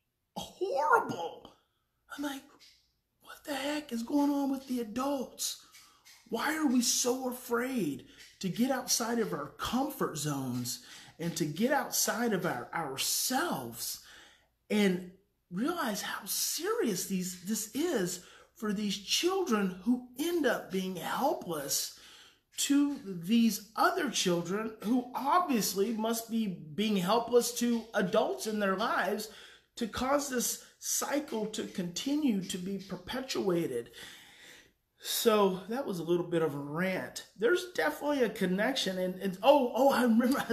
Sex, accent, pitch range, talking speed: male, American, 175-240 Hz, 135 wpm